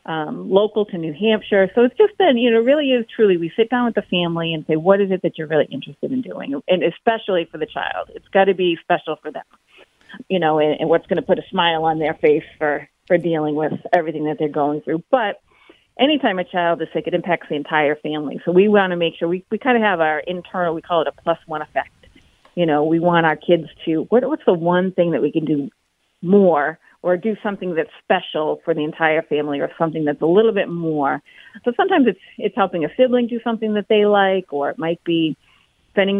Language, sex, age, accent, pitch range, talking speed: English, female, 40-59, American, 160-200 Hz, 240 wpm